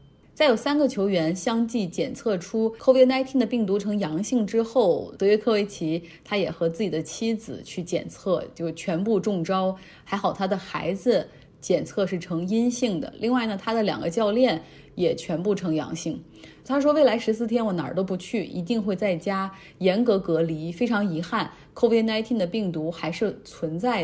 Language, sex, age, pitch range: Chinese, female, 20-39, 170-230 Hz